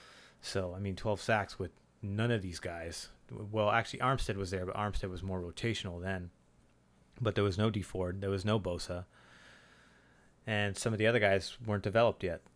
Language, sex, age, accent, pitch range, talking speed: English, male, 30-49, American, 95-110 Hz, 190 wpm